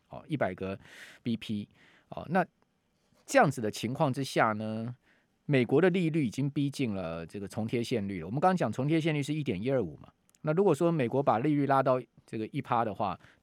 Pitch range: 110-150 Hz